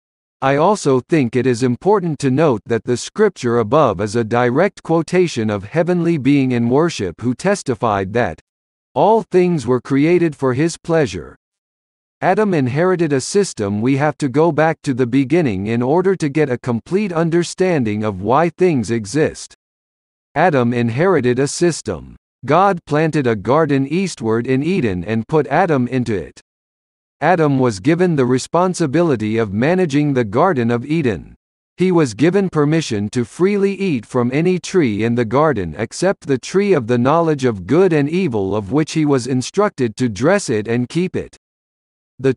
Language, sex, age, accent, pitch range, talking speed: English, male, 50-69, American, 120-170 Hz, 165 wpm